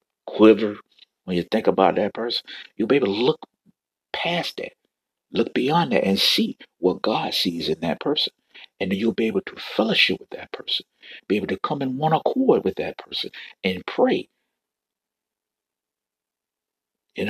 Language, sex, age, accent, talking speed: English, male, 50-69, American, 165 wpm